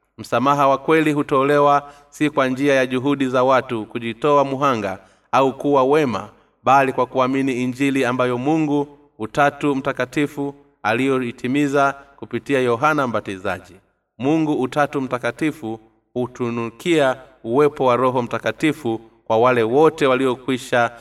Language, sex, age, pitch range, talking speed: Swahili, male, 30-49, 115-140 Hz, 115 wpm